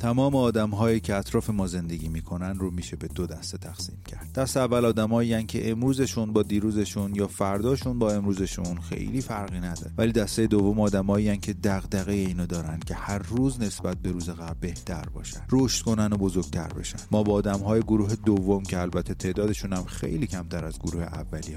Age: 30-49